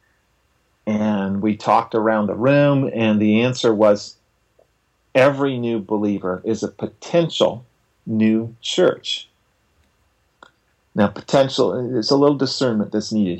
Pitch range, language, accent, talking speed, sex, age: 105-130 Hz, English, American, 115 wpm, male, 40-59